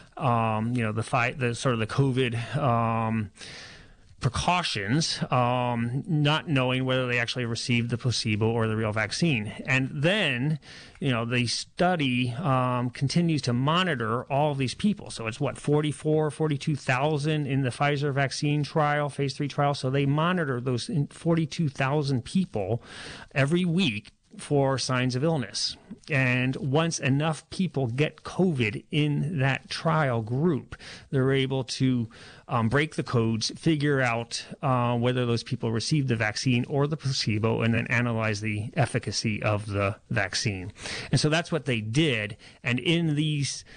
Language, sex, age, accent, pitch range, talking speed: English, male, 30-49, American, 120-150 Hz, 150 wpm